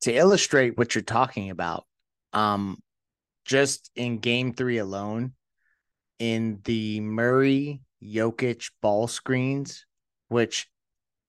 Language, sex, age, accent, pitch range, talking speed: English, male, 30-49, American, 110-130 Hz, 95 wpm